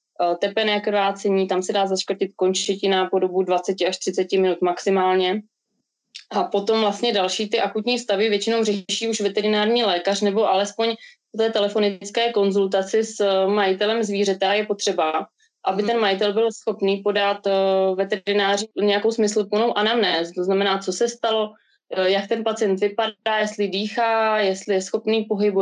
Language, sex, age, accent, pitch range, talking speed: Czech, female, 20-39, native, 190-215 Hz, 145 wpm